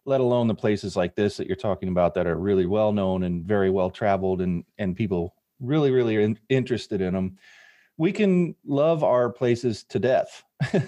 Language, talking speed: English, 190 wpm